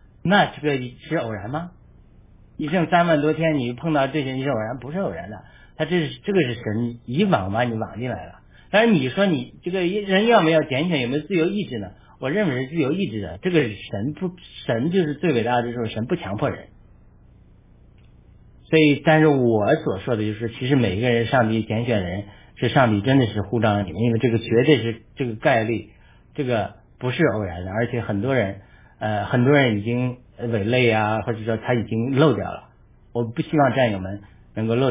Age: 50-69